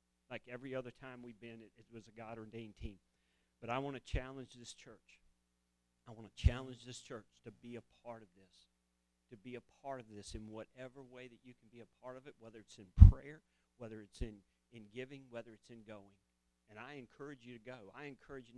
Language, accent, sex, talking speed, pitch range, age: English, American, male, 225 wpm, 100-140 Hz, 50-69